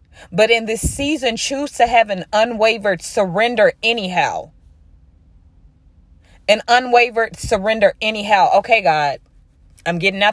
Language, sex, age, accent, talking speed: English, female, 20-39, American, 115 wpm